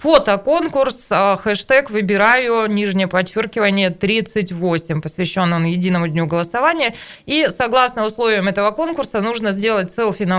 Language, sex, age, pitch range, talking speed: Russian, female, 20-39, 180-235 Hz, 110 wpm